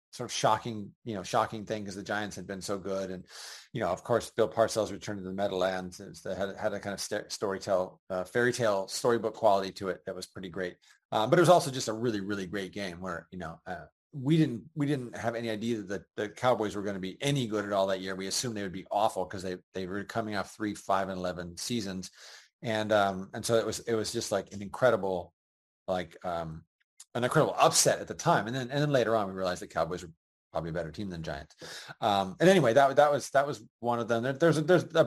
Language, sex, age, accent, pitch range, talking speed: English, male, 30-49, American, 100-125 Hz, 255 wpm